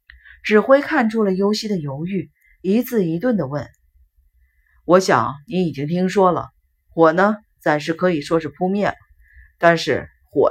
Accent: native